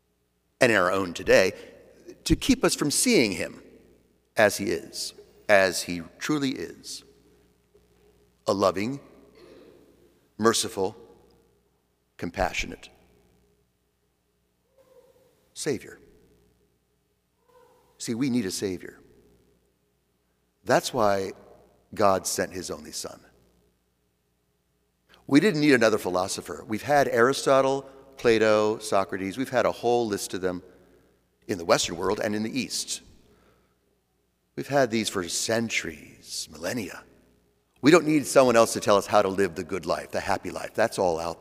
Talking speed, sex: 125 wpm, male